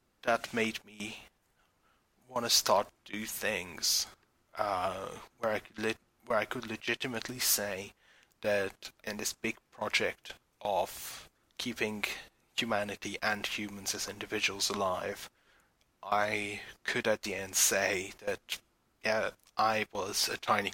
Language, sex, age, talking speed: English, male, 30-49, 125 wpm